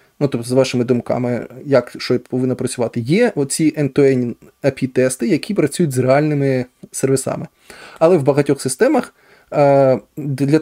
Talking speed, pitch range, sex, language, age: 130 wpm, 130-160 Hz, male, Ukrainian, 20-39